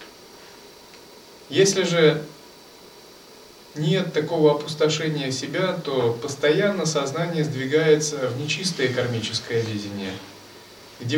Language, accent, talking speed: Russian, native, 80 wpm